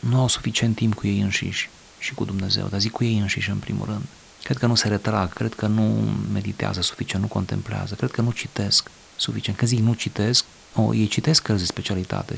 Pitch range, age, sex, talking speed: 100-120 Hz, 30-49, male, 220 wpm